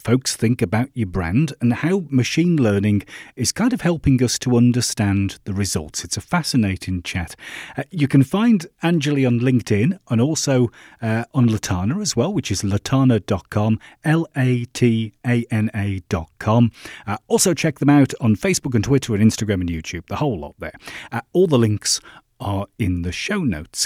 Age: 40-59